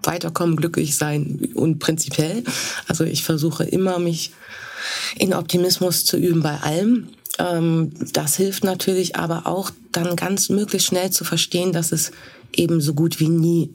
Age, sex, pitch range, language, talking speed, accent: 20-39, female, 155-185 Hz, German, 150 wpm, German